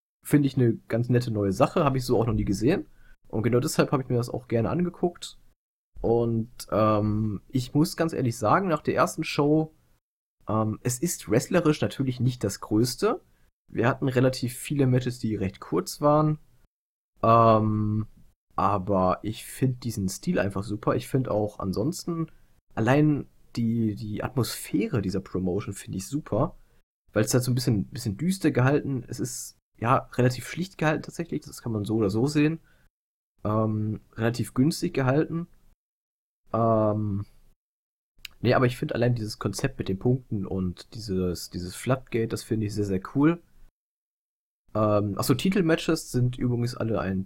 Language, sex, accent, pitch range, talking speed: German, male, German, 105-135 Hz, 165 wpm